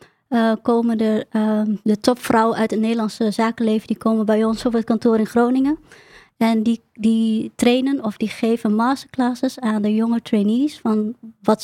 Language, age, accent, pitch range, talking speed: Dutch, 20-39, Dutch, 220-245 Hz, 170 wpm